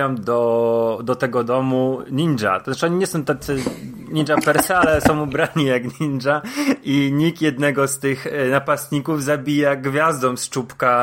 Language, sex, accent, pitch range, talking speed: Polish, male, native, 125-150 Hz, 145 wpm